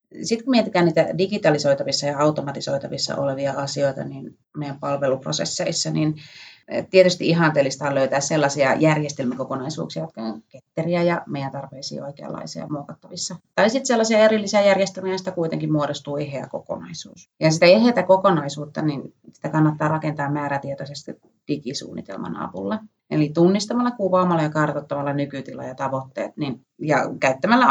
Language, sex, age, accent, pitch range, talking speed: Finnish, female, 30-49, native, 140-180 Hz, 130 wpm